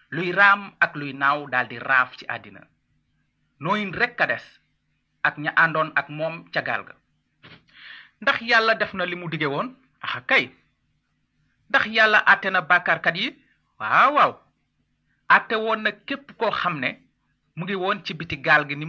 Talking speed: 120 wpm